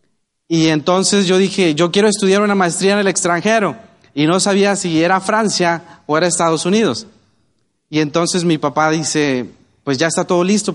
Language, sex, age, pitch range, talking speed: Spanish, male, 30-49, 160-200 Hz, 180 wpm